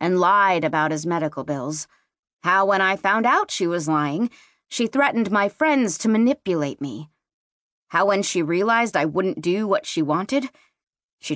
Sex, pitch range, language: female, 155-225 Hz, English